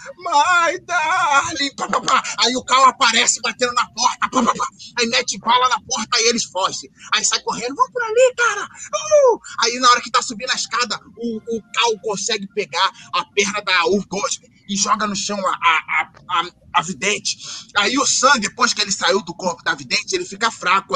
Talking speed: 205 wpm